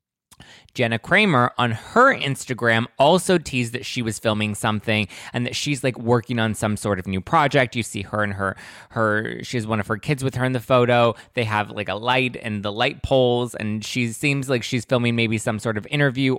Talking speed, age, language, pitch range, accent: 220 wpm, 20-39, English, 110-130 Hz, American